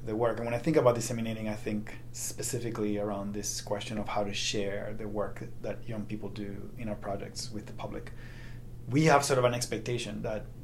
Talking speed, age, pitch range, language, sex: 210 wpm, 30-49, 110-120 Hz, English, male